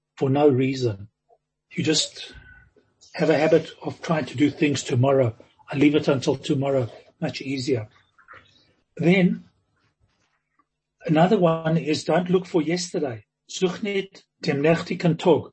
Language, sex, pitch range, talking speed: English, male, 140-175 Hz, 110 wpm